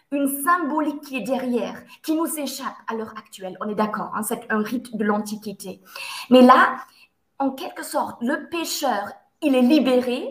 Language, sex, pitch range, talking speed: French, female, 230-290 Hz, 175 wpm